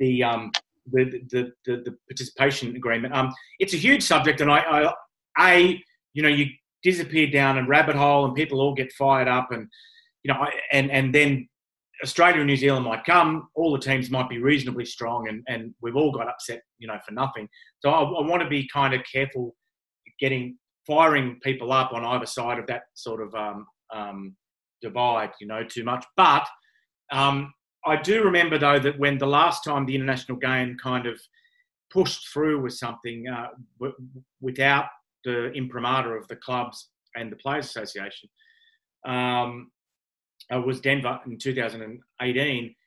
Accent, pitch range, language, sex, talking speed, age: Australian, 125-145 Hz, English, male, 175 wpm, 30-49